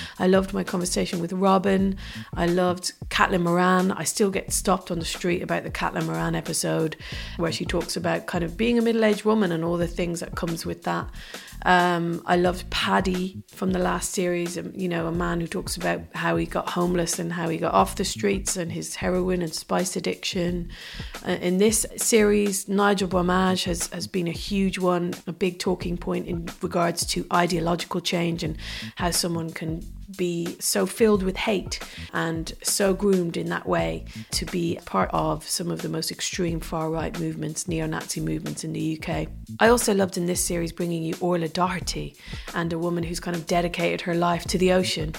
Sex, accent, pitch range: female, British, 165-190 Hz